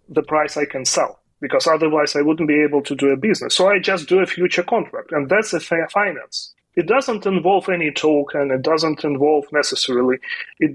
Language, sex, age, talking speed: English, male, 30-49, 205 wpm